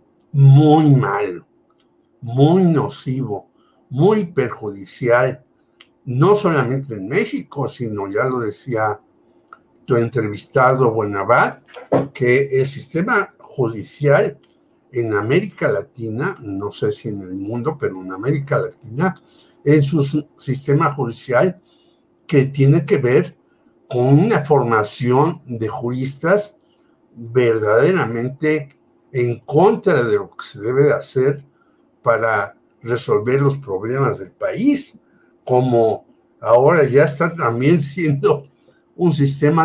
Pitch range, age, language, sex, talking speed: 120-150 Hz, 60-79, Spanish, male, 105 wpm